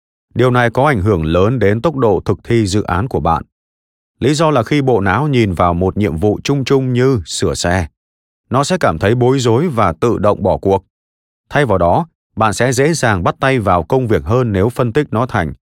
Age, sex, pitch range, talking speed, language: 30-49, male, 90-130 Hz, 230 wpm, Vietnamese